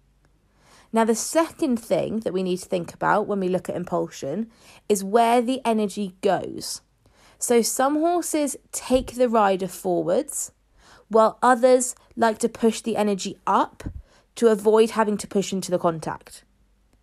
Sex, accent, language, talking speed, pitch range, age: female, British, English, 150 wpm, 185-230 Hz, 20-39